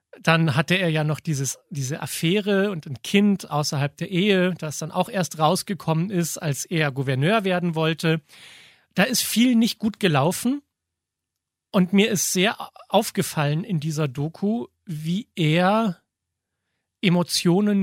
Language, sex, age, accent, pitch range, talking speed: German, male, 40-59, German, 150-195 Hz, 140 wpm